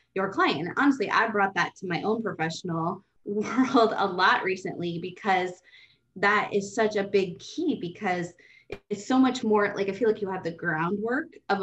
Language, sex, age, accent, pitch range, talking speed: English, female, 20-39, American, 175-210 Hz, 185 wpm